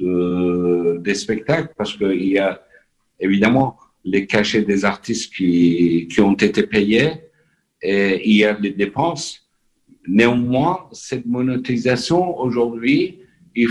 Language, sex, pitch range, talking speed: Arabic, male, 105-125 Hz, 125 wpm